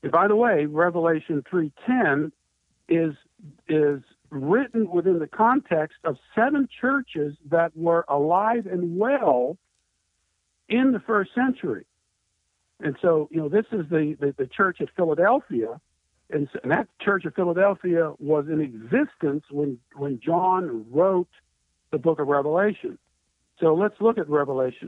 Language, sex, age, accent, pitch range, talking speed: English, male, 60-79, American, 150-210 Hz, 140 wpm